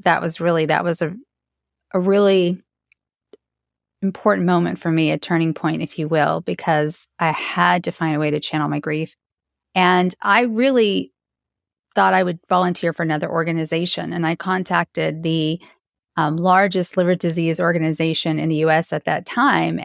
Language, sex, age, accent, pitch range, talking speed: English, female, 30-49, American, 155-185 Hz, 165 wpm